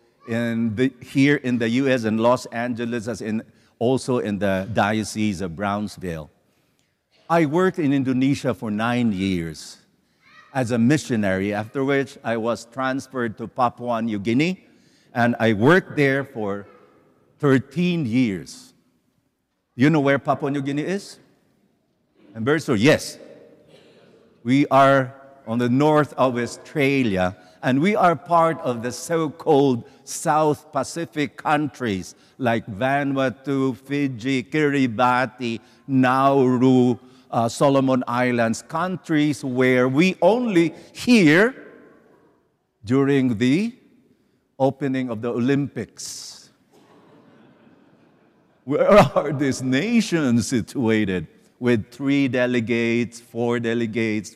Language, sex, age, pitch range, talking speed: English, male, 50-69, 115-140 Hz, 110 wpm